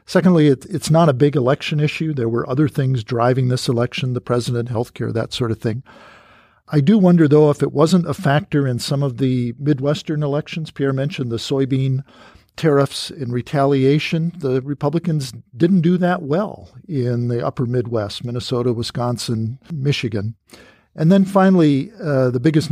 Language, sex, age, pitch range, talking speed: English, male, 50-69, 120-150 Hz, 165 wpm